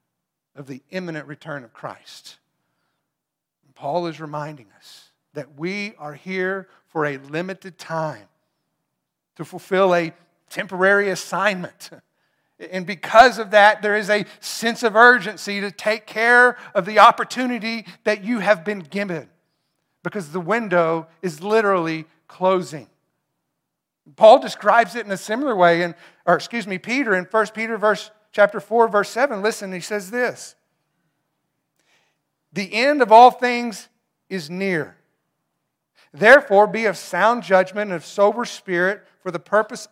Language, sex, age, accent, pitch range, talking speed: English, male, 50-69, American, 170-215 Hz, 140 wpm